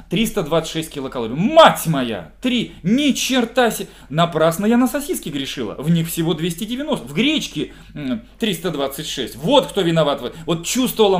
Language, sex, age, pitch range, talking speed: Russian, male, 20-39, 145-215 Hz, 140 wpm